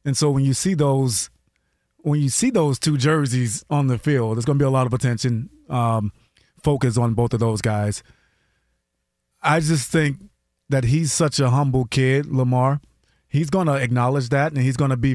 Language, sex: English, male